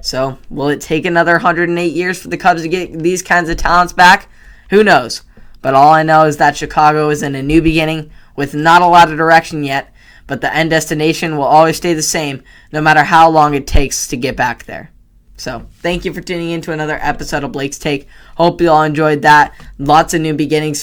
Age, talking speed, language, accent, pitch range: 10-29, 225 wpm, English, American, 135-160 Hz